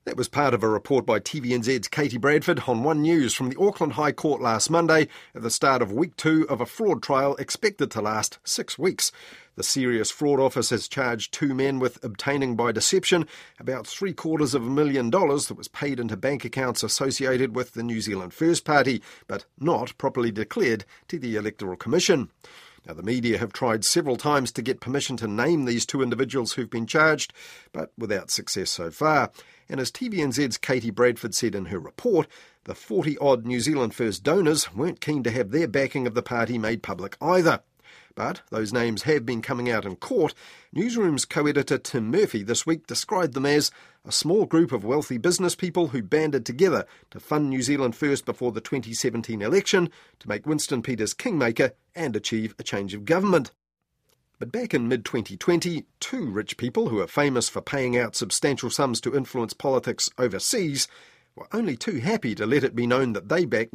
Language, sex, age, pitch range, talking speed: English, male, 40-59, 120-150 Hz, 190 wpm